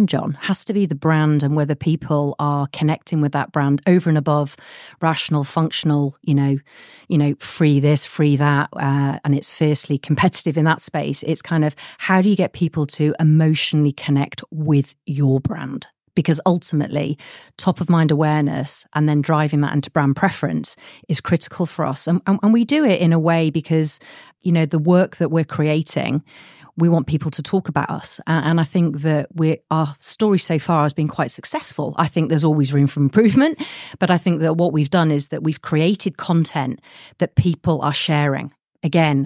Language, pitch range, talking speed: English, 145-170 Hz, 195 wpm